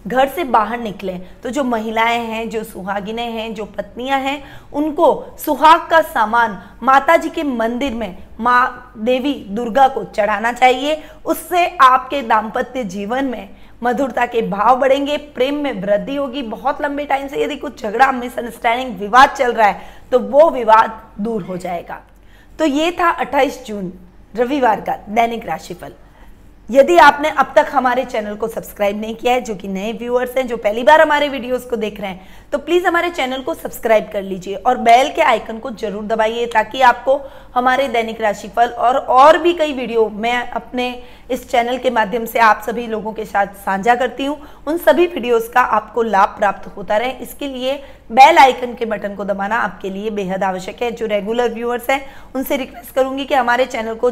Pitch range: 220-270 Hz